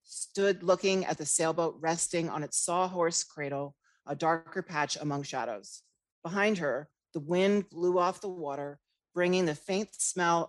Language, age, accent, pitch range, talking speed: English, 40-59, American, 150-190 Hz, 155 wpm